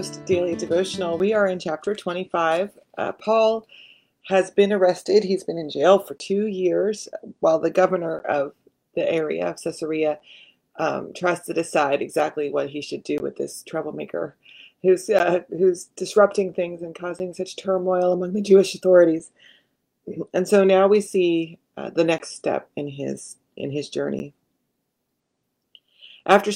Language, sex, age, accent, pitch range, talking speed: English, female, 30-49, American, 165-200 Hz, 150 wpm